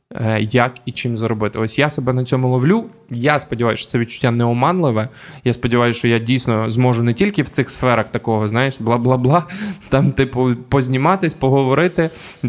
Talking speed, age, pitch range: 180 wpm, 20-39, 120-150 Hz